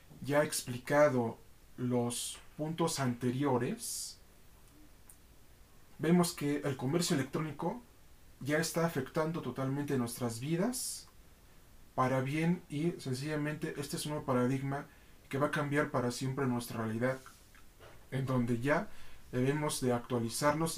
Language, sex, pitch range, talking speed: Spanish, male, 120-150 Hz, 115 wpm